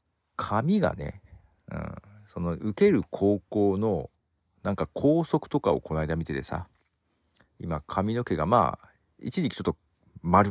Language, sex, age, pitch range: Japanese, male, 50-69, 85-120 Hz